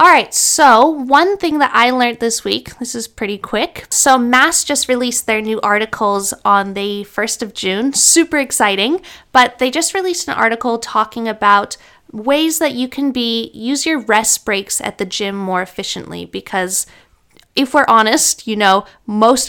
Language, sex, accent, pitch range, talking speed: English, female, American, 195-250 Hz, 170 wpm